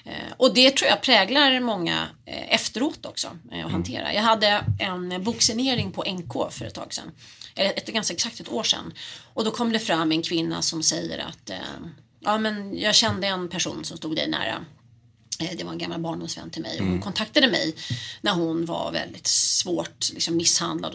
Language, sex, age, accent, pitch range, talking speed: English, female, 30-49, Swedish, 165-230 Hz, 180 wpm